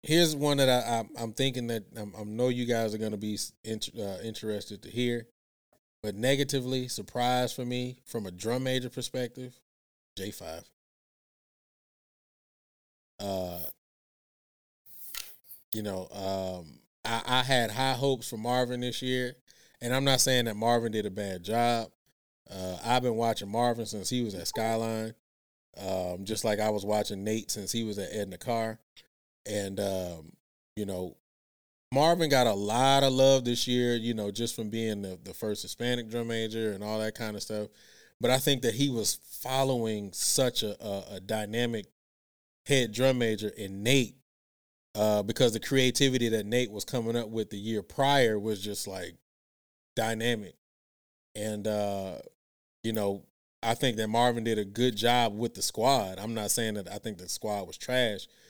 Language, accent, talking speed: English, American, 170 wpm